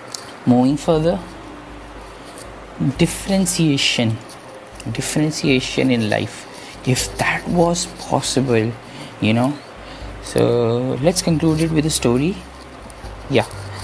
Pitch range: 105-135 Hz